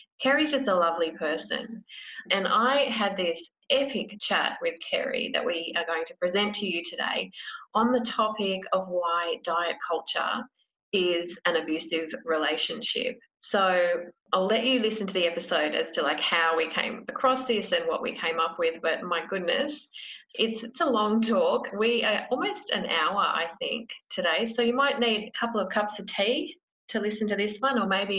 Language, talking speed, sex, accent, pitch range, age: English, 185 wpm, female, Australian, 175-250 Hz, 30-49